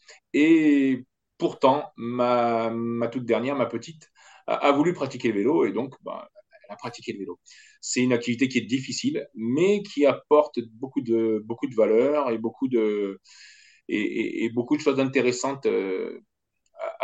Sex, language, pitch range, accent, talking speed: male, French, 115-160 Hz, French, 165 wpm